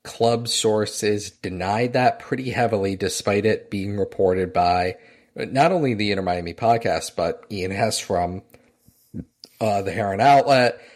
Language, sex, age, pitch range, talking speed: English, male, 40-59, 95-120 Hz, 130 wpm